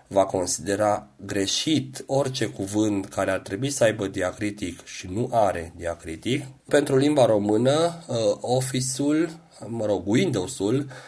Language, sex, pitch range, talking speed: Romanian, male, 95-130 Hz, 120 wpm